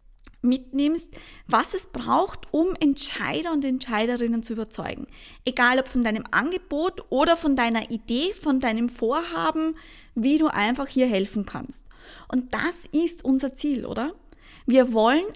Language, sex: English, female